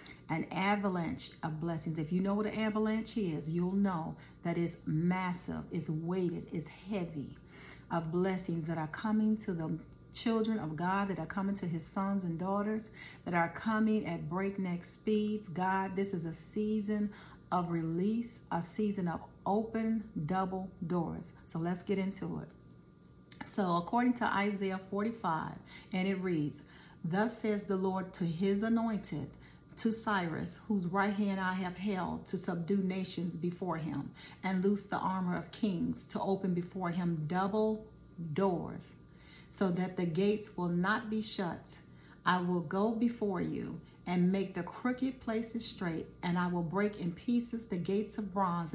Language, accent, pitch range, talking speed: English, American, 175-210 Hz, 160 wpm